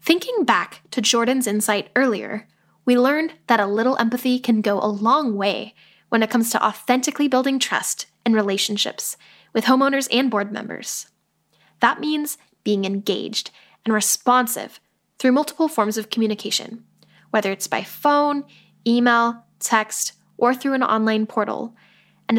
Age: 10-29